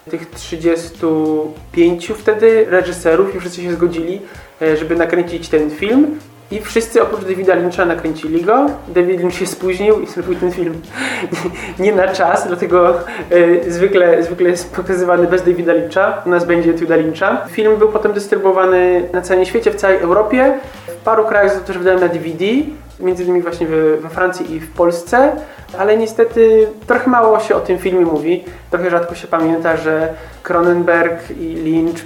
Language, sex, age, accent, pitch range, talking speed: Polish, male, 20-39, native, 165-190 Hz, 160 wpm